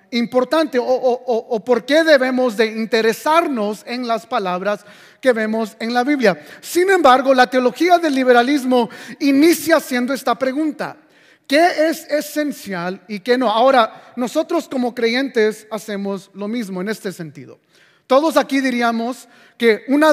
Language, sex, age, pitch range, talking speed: English, male, 30-49, 220-270 Hz, 145 wpm